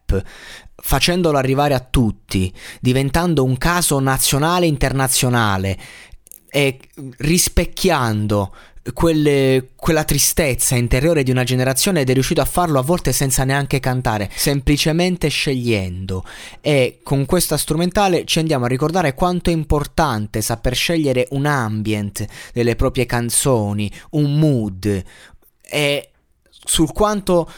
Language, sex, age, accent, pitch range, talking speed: Italian, male, 20-39, native, 125-175 Hz, 115 wpm